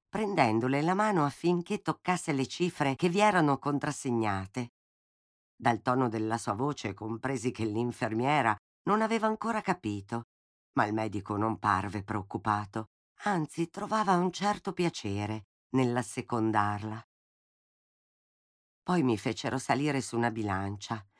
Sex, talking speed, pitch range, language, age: female, 120 wpm, 110-155 Hz, Italian, 50-69